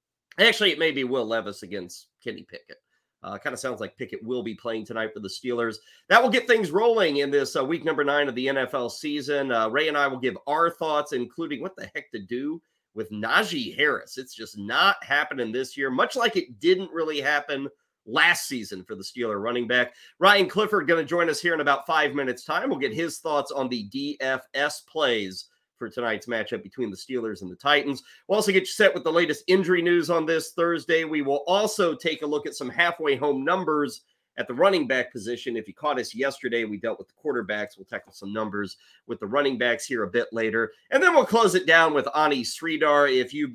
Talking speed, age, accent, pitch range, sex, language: 225 wpm, 30-49, American, 115-165 Hz, male, English